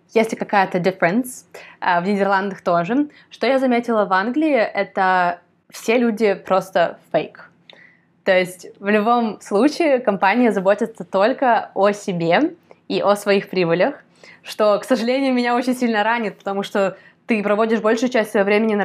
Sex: female